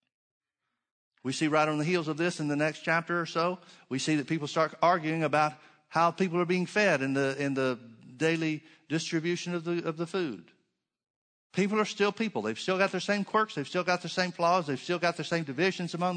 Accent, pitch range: American, 155-185 Hz